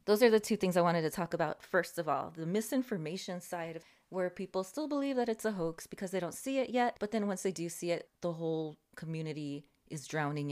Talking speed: 240 wpm